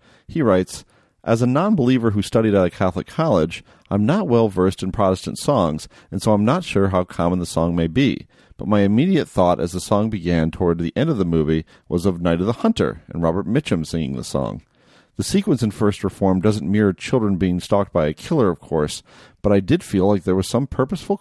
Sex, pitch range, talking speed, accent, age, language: male, 90-110 Hz, 225 wpm, American, 40-59, English